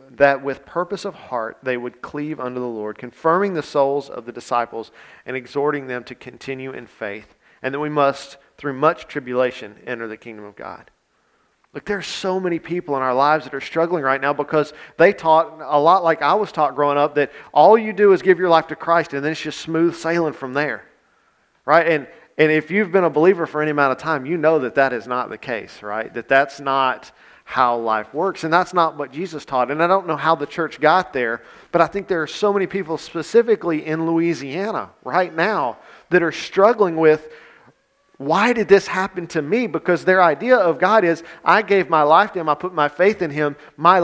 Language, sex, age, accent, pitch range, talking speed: English, male, 40-59, American, 140-180 Hz, 225 wpm